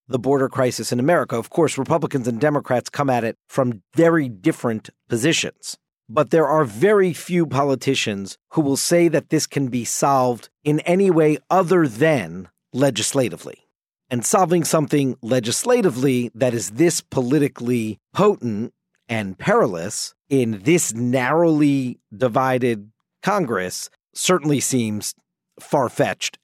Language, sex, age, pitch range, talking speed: English, male, 50-69, 120-160 Hz, 125 wpm